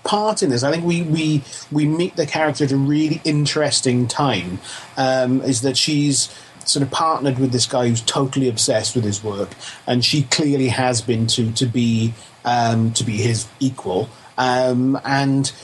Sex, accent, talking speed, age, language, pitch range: male, British, 180 wpm, 30-49, English, 115-145 Hz